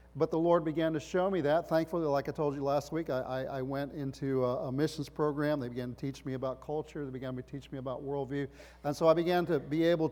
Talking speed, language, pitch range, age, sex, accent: 265 wpm, English, 135-175 Hz, 40-59, male, American